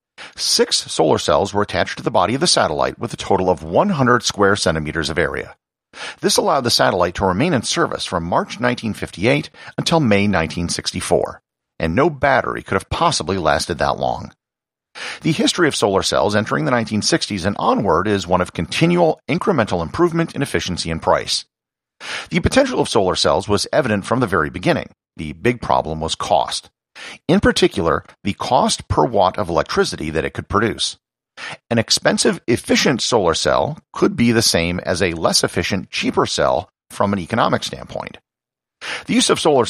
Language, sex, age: English, male, 50-69